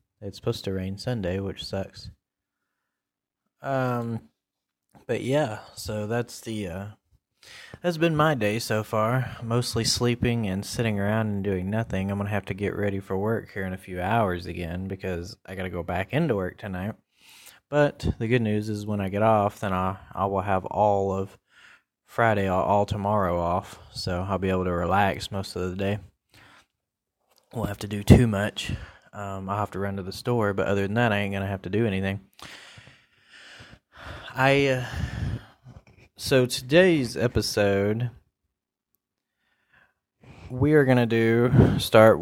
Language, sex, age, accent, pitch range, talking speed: English, male, 20-39, American, 95-115 Hz, 165 wpm